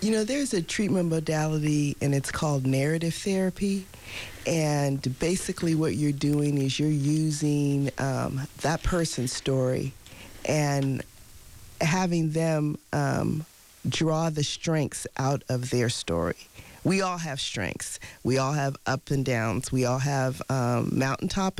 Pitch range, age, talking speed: 125-165 Hz, 40-59, 135 wpm